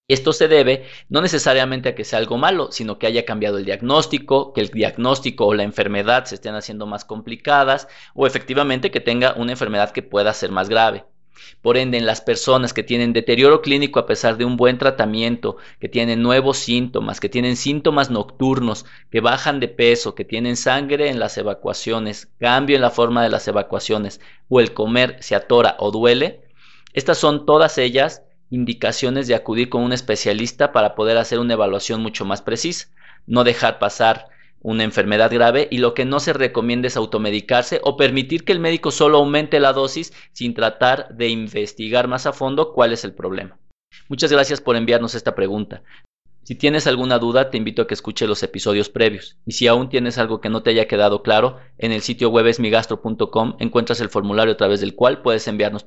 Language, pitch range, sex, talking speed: Spanish, 110-135 Hz, male, 195 wpm